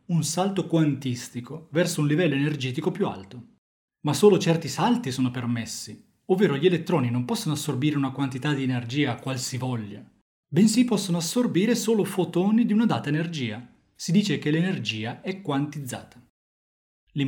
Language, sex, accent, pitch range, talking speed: Italian, male, native, 125-180 Hz, 150 wpm